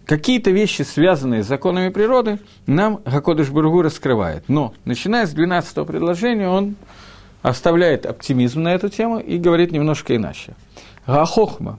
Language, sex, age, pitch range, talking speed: Russian, male, 50-69, 115-175 Hz, 125 wpm